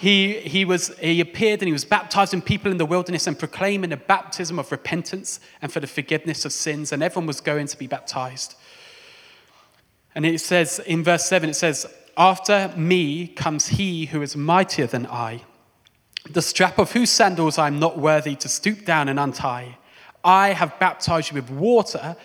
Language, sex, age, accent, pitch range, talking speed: English, male, 20-39, British, 140-190 Hz, 185 wpm